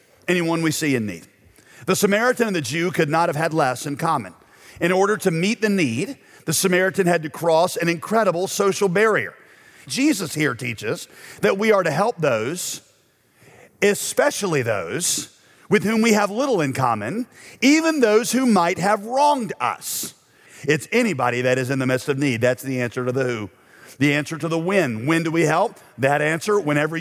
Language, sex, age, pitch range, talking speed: English, male, 40-59, 150-215 Hz, 185 wpm